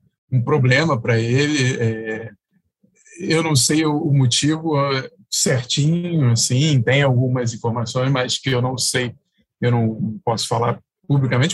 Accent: Brazilian